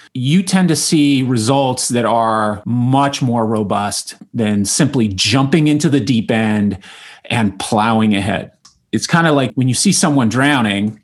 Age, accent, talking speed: 30-49, American, 160 wpm